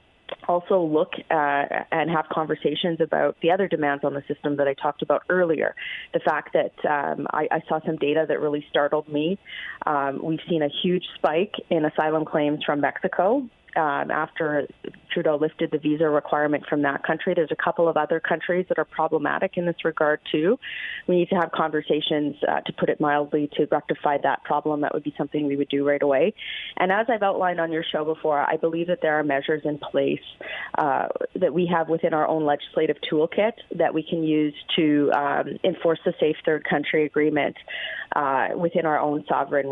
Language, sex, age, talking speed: English, female, 30-49, 195 wpm